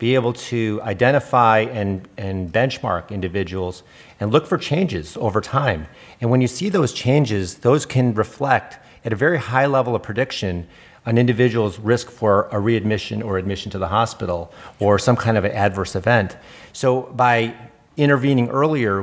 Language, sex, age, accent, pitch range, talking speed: English, male, 40-59, American, 100-125 Hz, 165 wpm